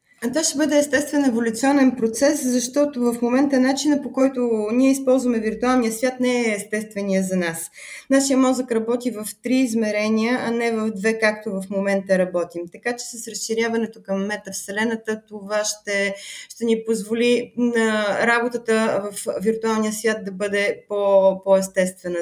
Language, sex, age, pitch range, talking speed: Bulgarian, female, 20-39, 200-240 Hz, 145 wpm